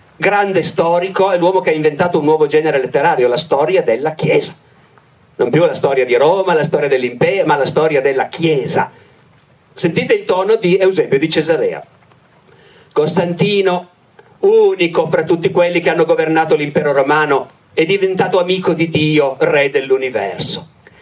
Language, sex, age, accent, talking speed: Italian, male, 50-69, native, 150 wpm